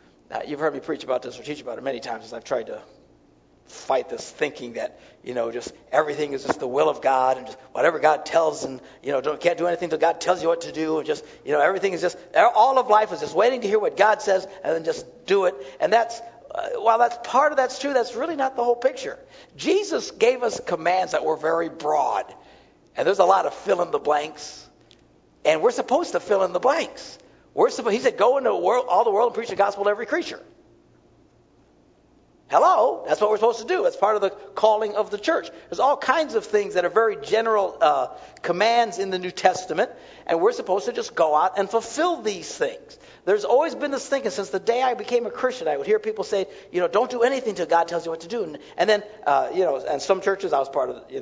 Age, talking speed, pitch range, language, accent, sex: 60-79, 245 wpm, 175-290 Hz, English, American, male